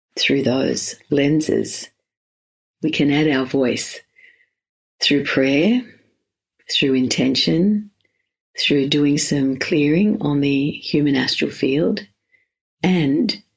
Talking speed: 95 wpm